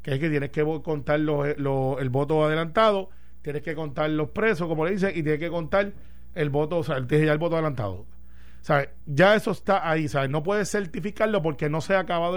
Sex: male